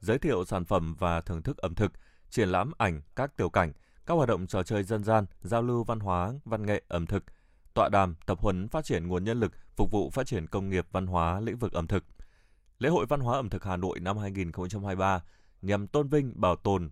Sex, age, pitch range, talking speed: male, 20-39, 90-115 Hz, 235 wpm